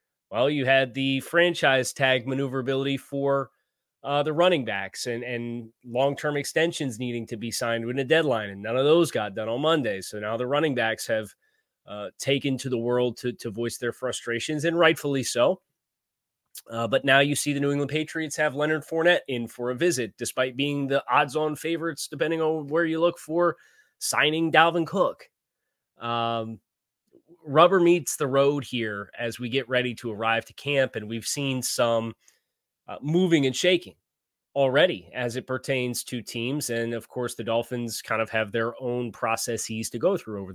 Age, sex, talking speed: 20-39, male, 180 wpm